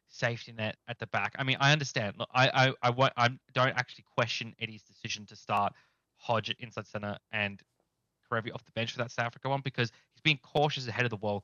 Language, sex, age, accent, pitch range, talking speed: English, male, 20-39, Australian, 110-135 Hz, 220 wpm